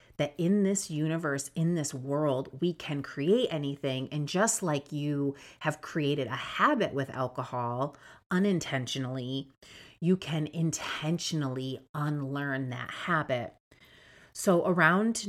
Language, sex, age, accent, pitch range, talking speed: English, female, 30-49, American, 135-170 Hz, 120 wpm